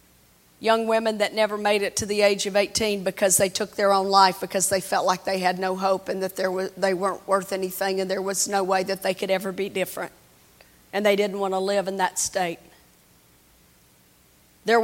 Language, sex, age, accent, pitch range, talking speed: English, female, 40-59, American, 185-210 Hz, 220 wpm